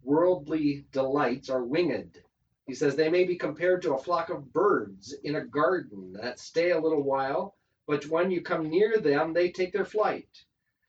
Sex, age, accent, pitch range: male, 40-59, American, 125-155 Hz